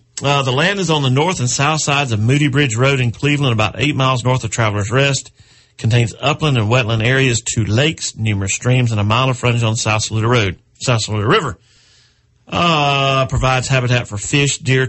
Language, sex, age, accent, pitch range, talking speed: English, male, 40-59, American, 110-130 Hz, 200 wpm